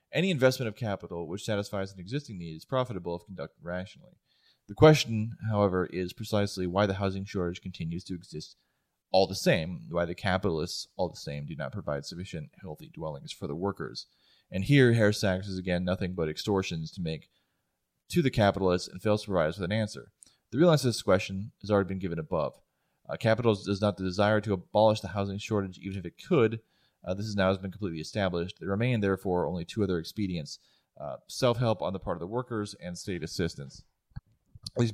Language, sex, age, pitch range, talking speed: English, male, 30-49, 90-105 Hz, 205 wpm